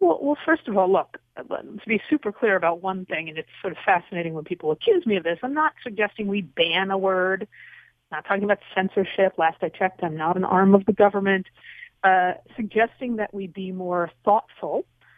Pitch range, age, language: 185-285 Hz, 40-59, English